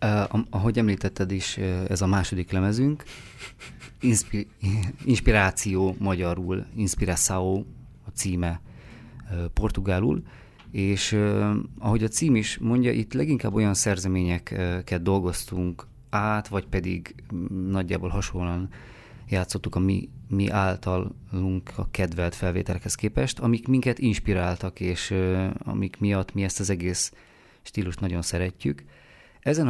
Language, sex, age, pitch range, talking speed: Hungarian, male, 30-49, 90-110 Hz, 105 wpm